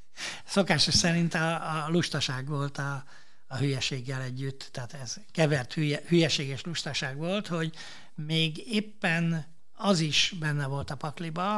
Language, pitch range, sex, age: Hungarian, 140-190 Hz, male, 60-79